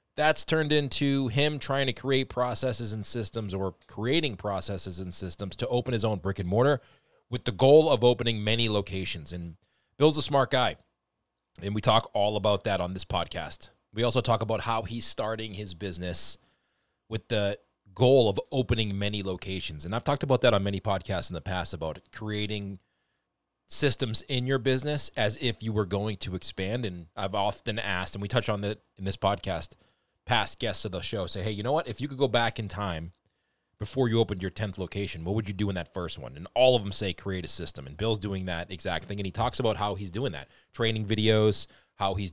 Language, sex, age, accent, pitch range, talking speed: English, male, 30-49, American, 95-120 Hz, 215 wpm